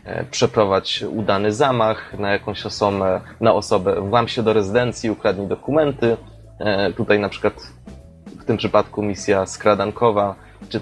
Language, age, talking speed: Polish, 20-39, 130 wpm